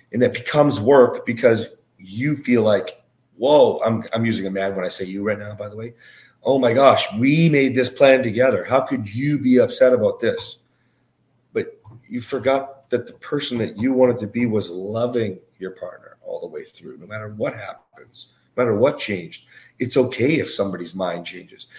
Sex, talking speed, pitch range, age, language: male, 195 wpm, 105-135 Hz, 40-59, English